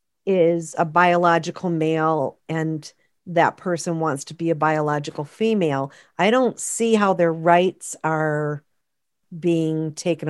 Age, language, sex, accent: 50-69, English, female, American